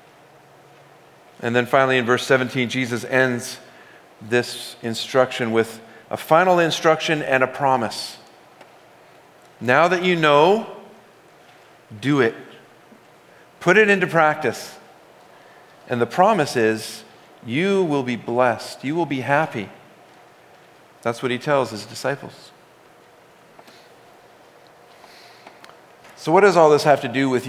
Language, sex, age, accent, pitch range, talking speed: English, male, 50-69, American, 115-155 Hz, 120 wpm